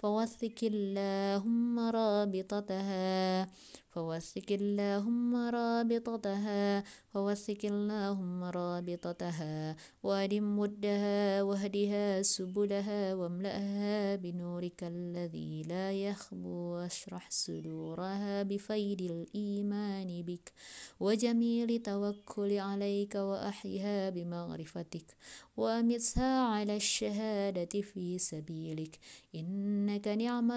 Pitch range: 175-205 Hz